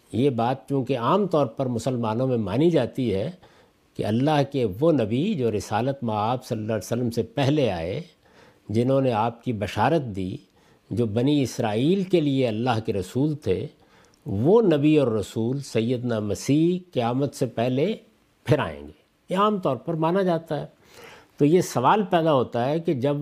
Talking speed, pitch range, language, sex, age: 180 wpm, 120-170 Hz, Urdu, male, 50-69